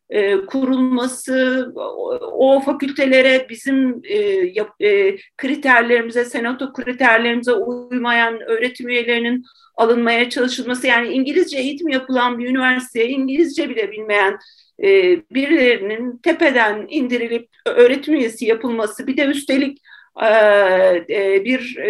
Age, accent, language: 50-69, native, Turkish